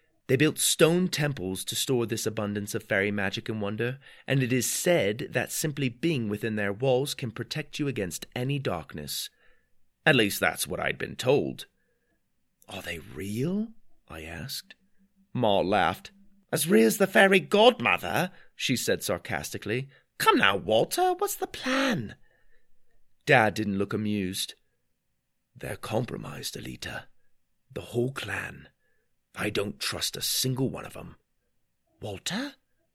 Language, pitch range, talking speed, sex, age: English, 110-165 Hz, 140 wpm, male, 30-49